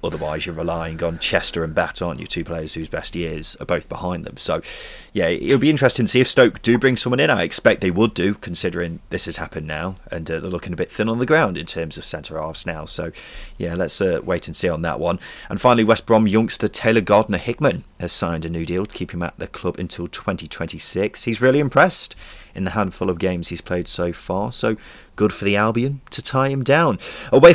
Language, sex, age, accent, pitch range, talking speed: English, male, 30-49, British, 85-125 Hz, 235 wpm